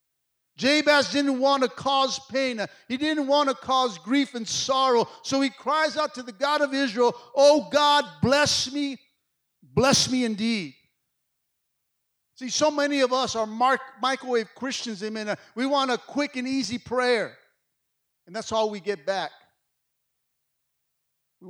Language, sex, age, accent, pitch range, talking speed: English, male, 50-69, American, 155-250 Hz, 145 wpm